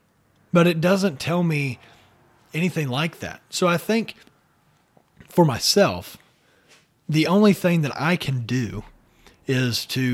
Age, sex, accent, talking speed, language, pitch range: 40-59, male, American, 130 wpm, English, 125-160 Hz